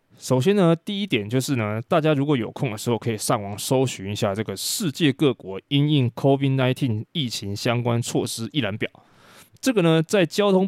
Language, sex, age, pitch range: Chinese, male, 20-39, 115-145 Hz